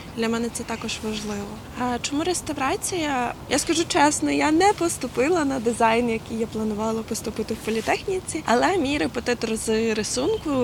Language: Ukrainian